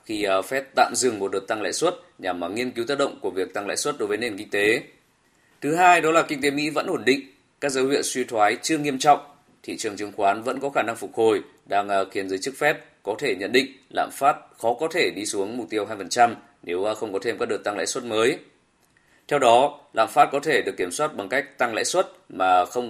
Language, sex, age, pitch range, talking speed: Vietnamese, male, 20-39, 110-150 Hz, 255 wpm